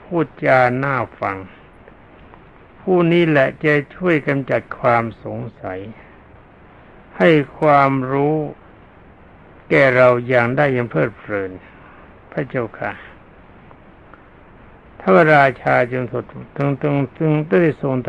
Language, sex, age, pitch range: Thai, male, 60-79, 120-155 Hz